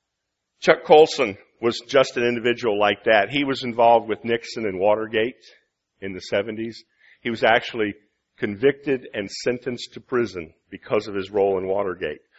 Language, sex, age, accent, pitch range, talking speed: English, male, 50-69, American, 110-145 Hz, 155 wpm